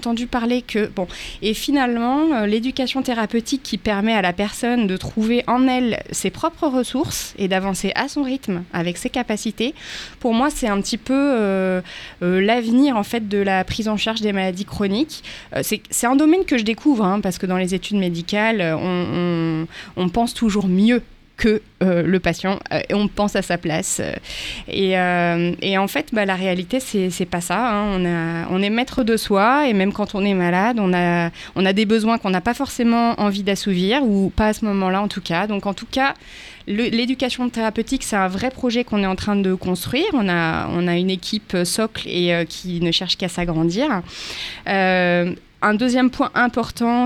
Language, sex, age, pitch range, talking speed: French, female, 20-39, 180-225 Hz, 205 wpm